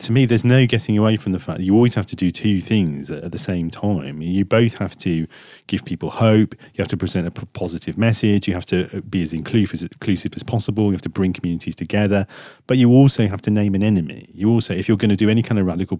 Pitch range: 90-110 Hz